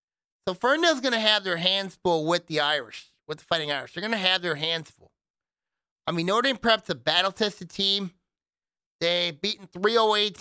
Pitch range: 160-200 Hz